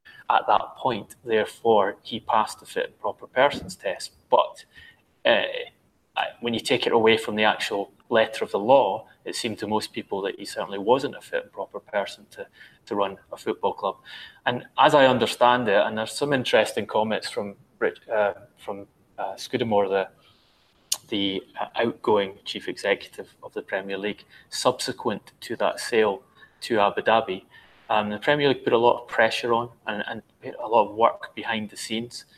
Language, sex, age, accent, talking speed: English, male, 20-39, British, 180 wpm